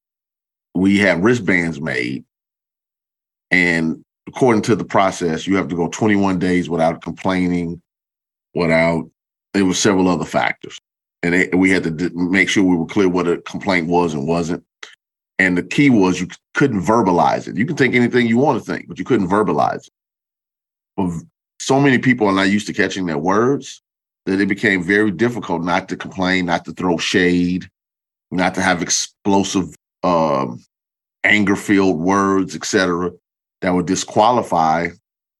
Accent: American